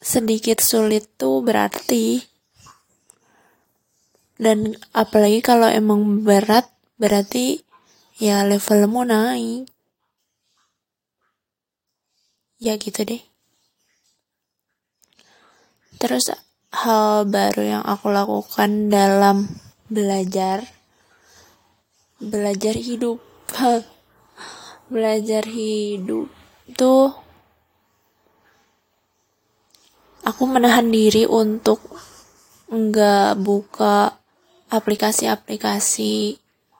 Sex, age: female, 20-39